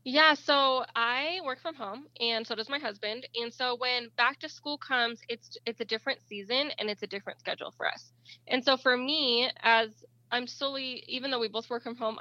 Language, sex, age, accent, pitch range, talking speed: English, female, 20-39, American, 195-245 Hz, 215 wpm